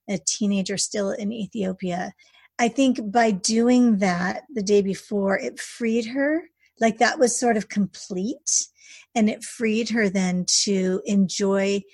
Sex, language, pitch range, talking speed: female, English, 195-235 Hz, 145 wpm